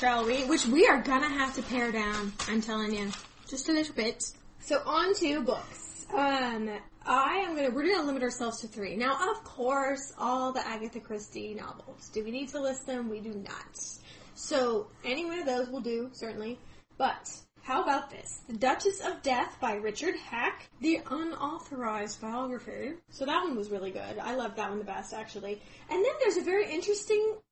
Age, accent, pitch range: 10-29, American, 225-295 Hz